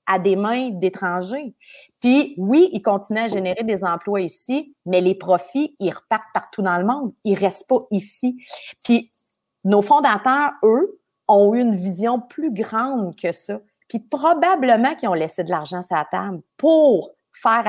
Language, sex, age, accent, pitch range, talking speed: French, female, 30-49, Canadian, 185-245 Hz, 175 wpm